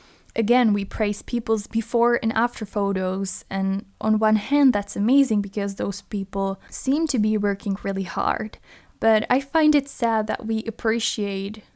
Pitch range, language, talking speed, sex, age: 195-235 Hz, English, 160 wpm, female, 10-29